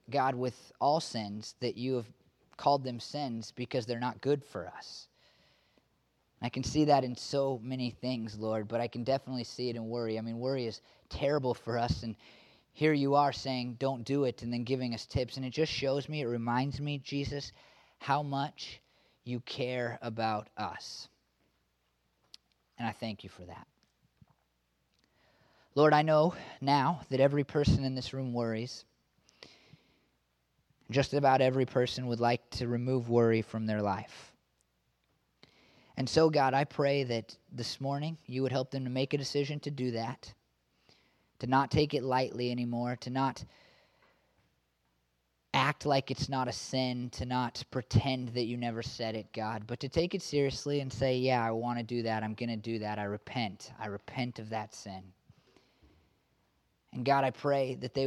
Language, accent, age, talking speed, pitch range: English, American, 30-49, 175 wpm, 115-135 Hz